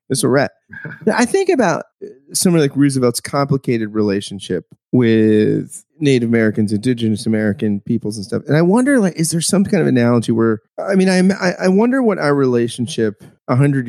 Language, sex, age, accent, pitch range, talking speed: English, male, 30-49, American, 115-150 Hz, 170 wpm